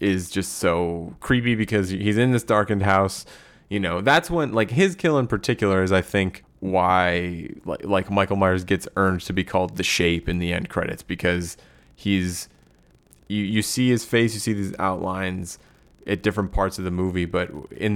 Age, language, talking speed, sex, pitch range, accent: 20-39, English, 185 wpm, male, 90-105 Hz, American